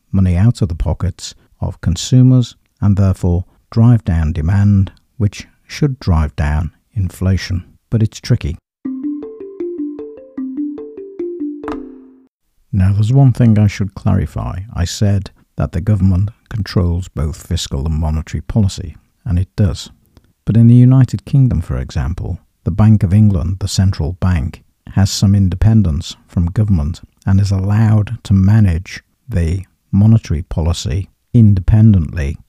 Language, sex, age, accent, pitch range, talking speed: English, male, 50-69, British, 85-110 Hz, 125 wpm